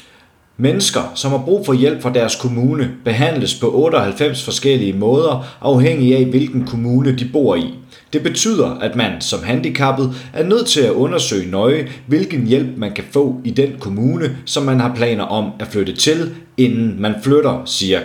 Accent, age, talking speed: native, 30-49, 175 wpm